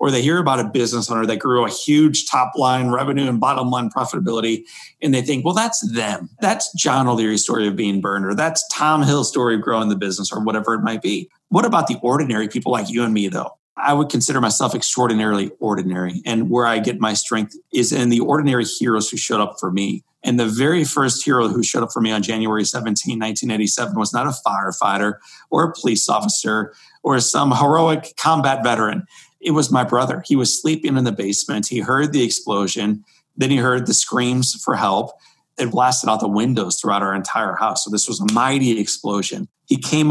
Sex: male